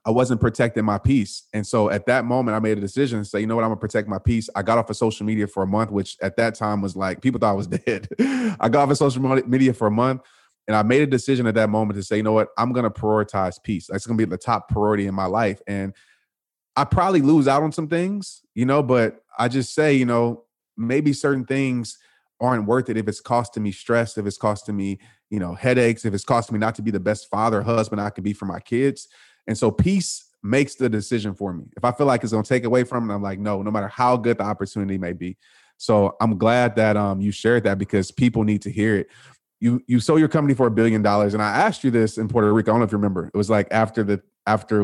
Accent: American